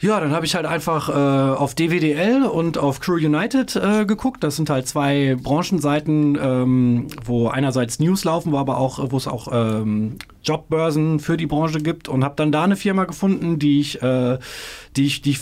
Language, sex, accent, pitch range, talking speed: German, male, German, 140-175 Hz, 200 wpm